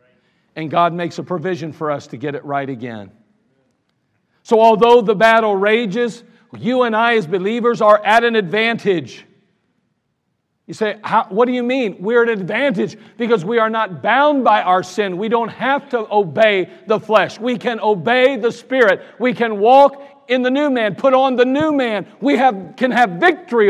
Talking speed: 185 wpm